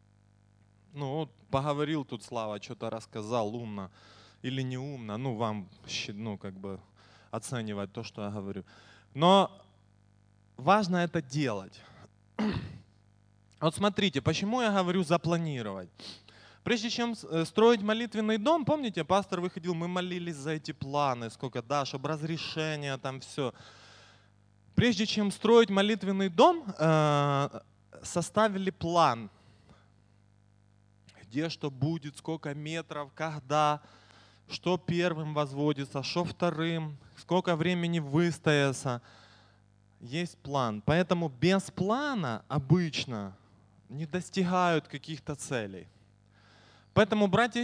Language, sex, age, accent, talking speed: Russian, male, 20-39, native, 100 wpm